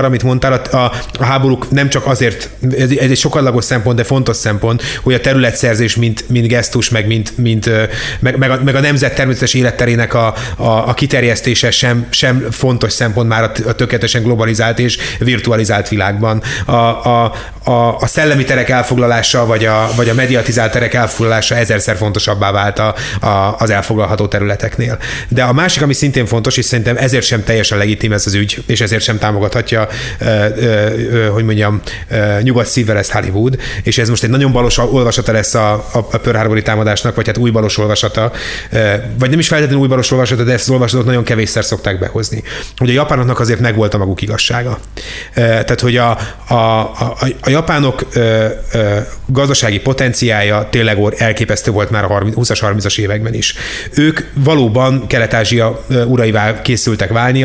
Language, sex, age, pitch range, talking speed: Hungarian, male, 30-49, 110-125 Hz, 175 wpm